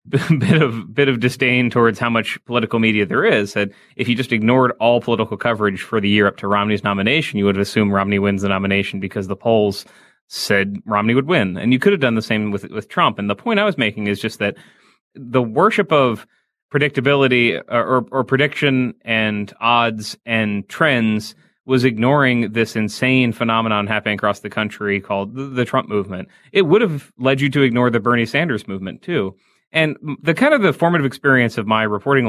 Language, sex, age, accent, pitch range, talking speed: English, male, 30-49, American, 105-130 Hz, 205 wpm